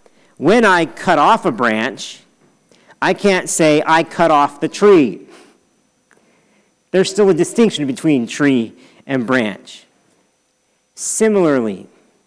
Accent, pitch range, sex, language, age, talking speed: American, 165-235 Hz, male, English, 40-59, 115 wpm